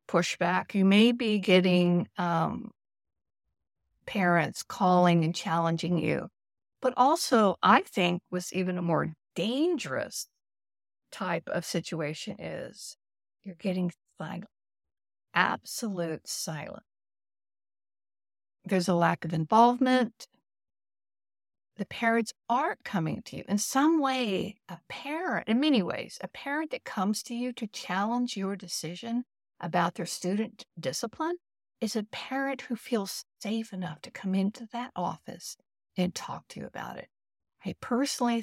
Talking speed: 130 wpm